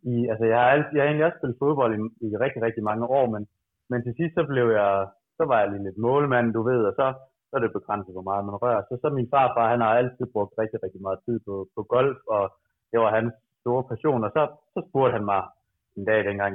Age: 30-49